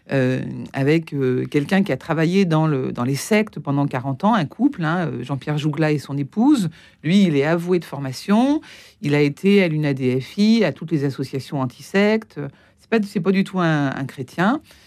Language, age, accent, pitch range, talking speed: French, 50-69, French, 145-210 Hz, 195 wpm